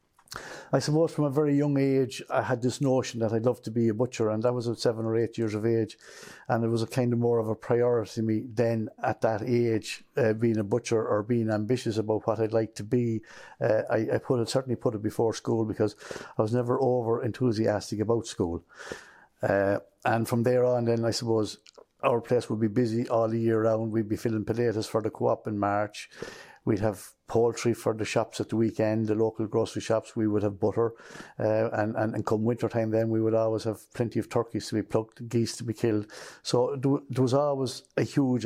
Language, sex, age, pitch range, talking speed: English, male, 60-79, 110-120 Hz, 230 wpm